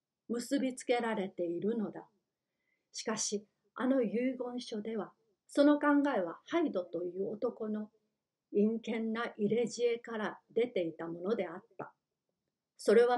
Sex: female